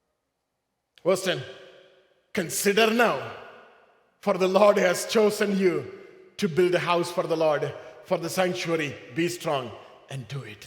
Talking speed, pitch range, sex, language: 135 wpm, 170-245 Hz, male, English